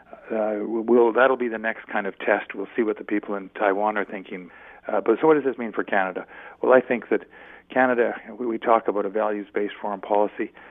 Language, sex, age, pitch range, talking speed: English, male, 50-69, 100-115 Hz, 230 wpm